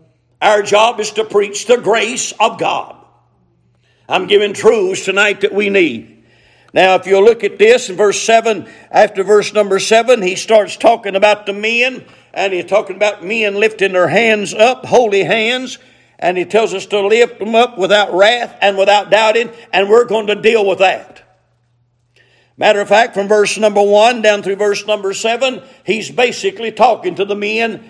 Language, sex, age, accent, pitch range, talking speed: English, male, 50-69, American, 185-225 Hz, 180 wpm